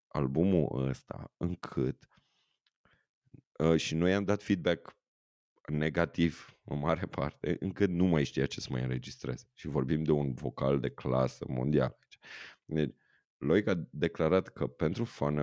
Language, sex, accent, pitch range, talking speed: Romanian, male, native, 70-95 Hz, 145 wpm